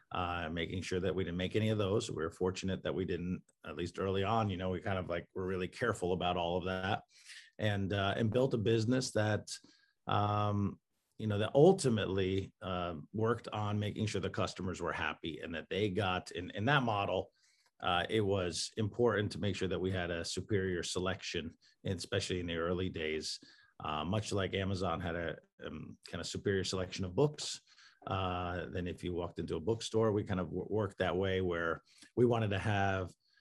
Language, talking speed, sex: English, 200 wpm, male